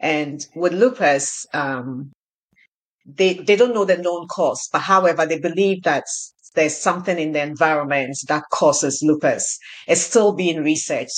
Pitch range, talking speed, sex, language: 150-185 Hz, 150 wpm, female, English